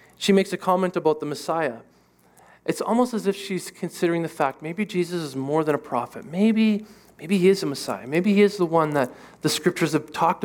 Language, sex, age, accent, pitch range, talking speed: English, male, 40-59, American, 135-180 Hz, 220 wpm